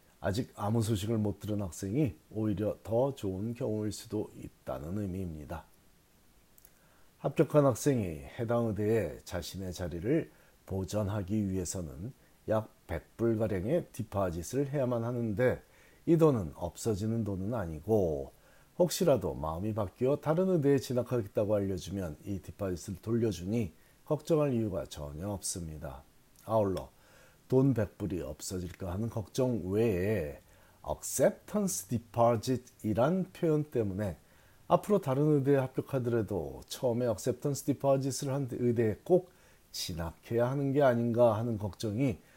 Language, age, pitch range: Korean, 40-59, 95-135 Hz